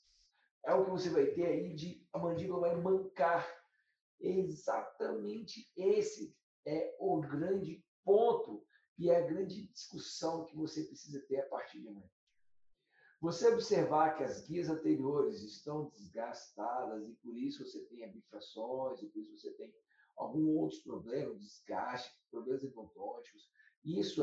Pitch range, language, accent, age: 155-230 Hz, Portuguese, Brazilian, 50-69